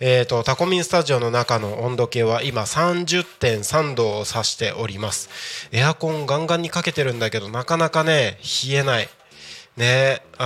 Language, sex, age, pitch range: Japanese, male, 20-39, 120-160 Hz